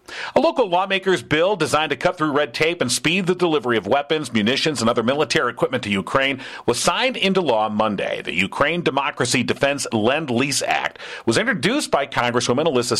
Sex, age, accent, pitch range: male, 50-69, American, 115-165 Hz